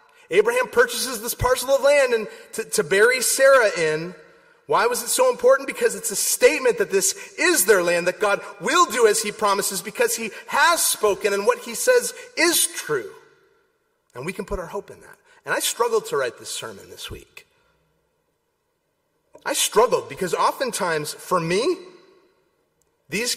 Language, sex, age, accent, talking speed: English, male, 30-49, American, 170 wpm